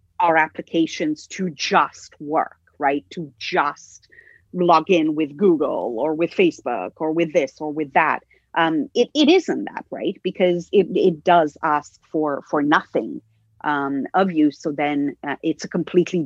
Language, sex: English, female